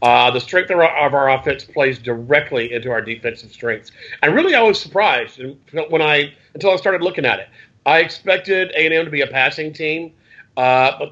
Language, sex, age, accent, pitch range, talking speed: English, male, 40-59, American, 130-160 Hz, 200 wpm